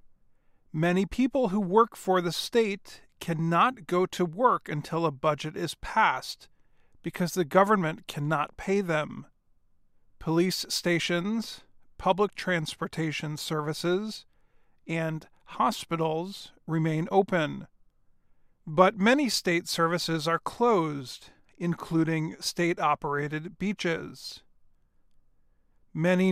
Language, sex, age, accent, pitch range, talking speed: English, male, 40-59, American, 160-195 Hz, 95 wpm